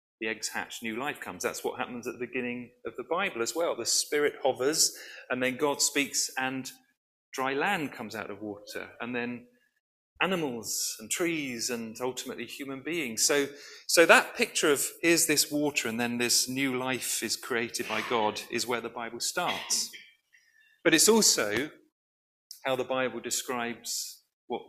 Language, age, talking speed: English, 40-59, 170 wpm